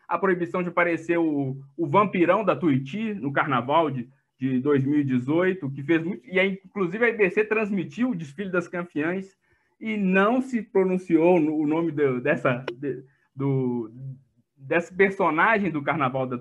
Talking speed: 155 wpm